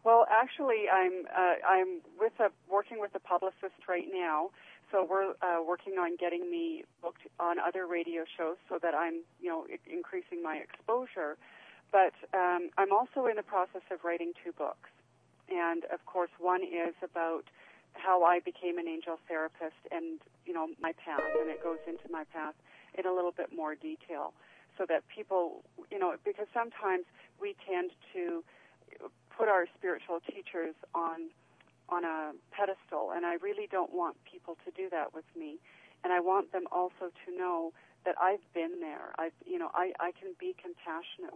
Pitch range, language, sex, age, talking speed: 170-215 Hz, English, female, 40-59, 175 wpm